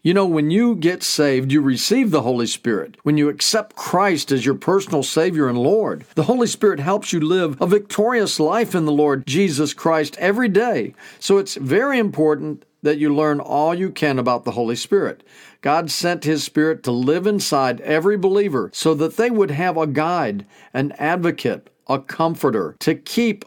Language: English